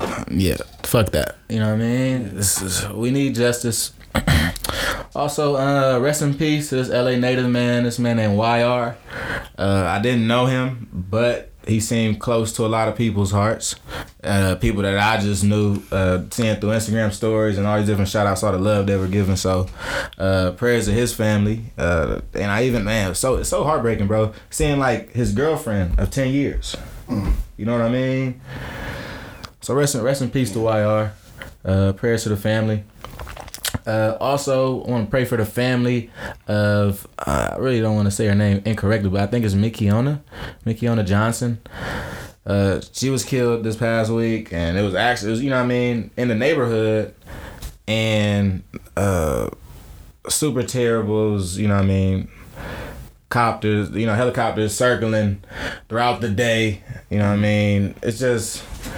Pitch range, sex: 100-120 Hz, male